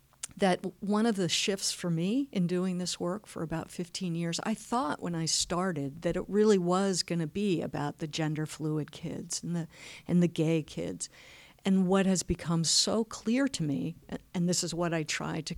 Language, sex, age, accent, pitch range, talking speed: English, female, 50-69, American, 160-195 Hz, 195 wpm